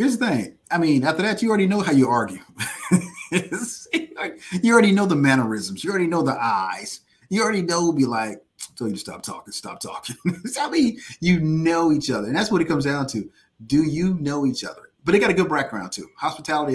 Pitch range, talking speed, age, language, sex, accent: 125-165 Hz, 220 wpm, 30-49, English, male, American